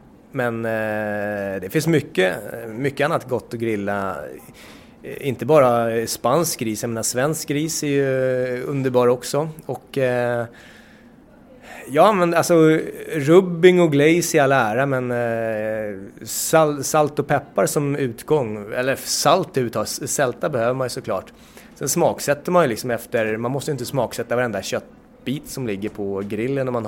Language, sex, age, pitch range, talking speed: English, male, 20-39, 110-140 Hz, 155 wpm